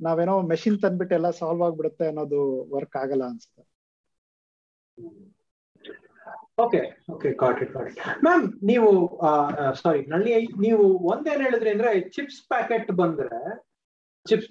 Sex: male